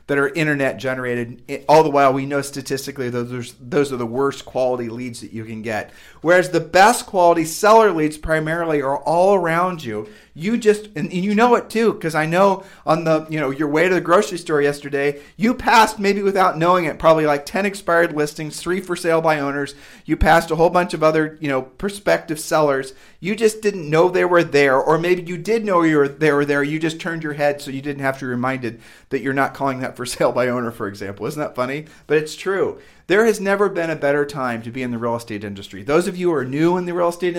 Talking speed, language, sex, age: 240 wpm, English, male, 40-59